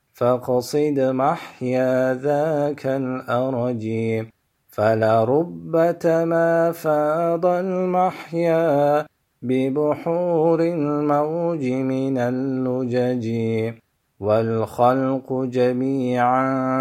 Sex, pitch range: male, 125-145 Hz